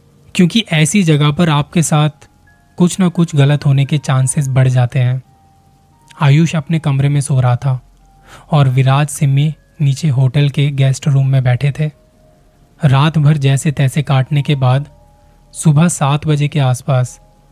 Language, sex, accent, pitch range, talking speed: Hindi, male, native, 130-155 Hz, 160 wpm